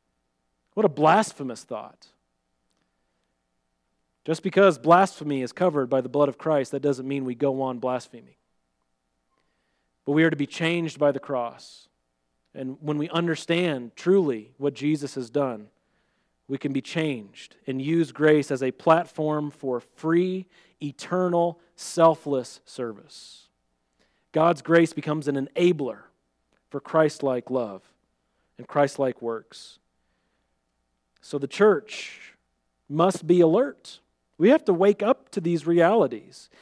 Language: English